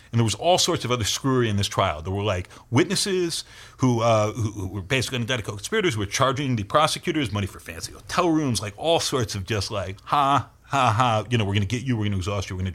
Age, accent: 40-59, American